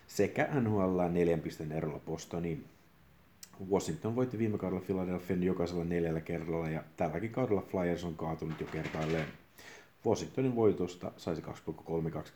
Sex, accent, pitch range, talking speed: male, native, 80-95 Hz, 120 wpm